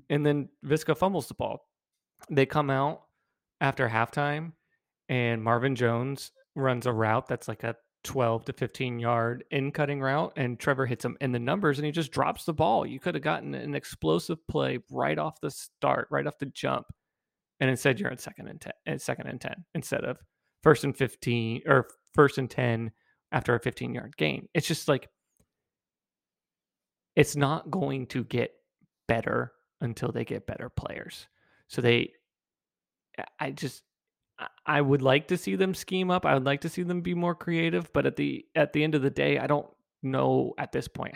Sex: male